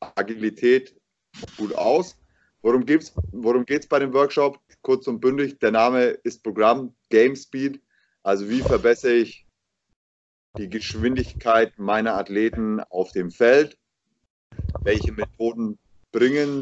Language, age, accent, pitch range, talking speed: German, 30-49, German, 105-125 Hz, 115 wpm